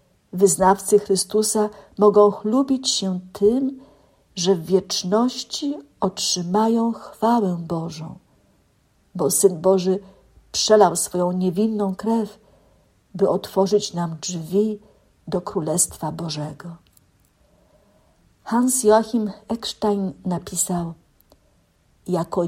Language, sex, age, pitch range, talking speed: Polish, female, 50-69, 180-220 Hz, 85 wpm